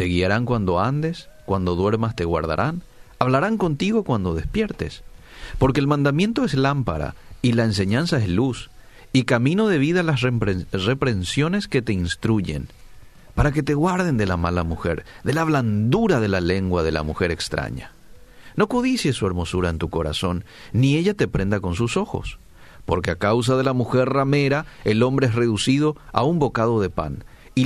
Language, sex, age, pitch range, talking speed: Spanish, male, 40-59, 95-145 Hz, 175 wpm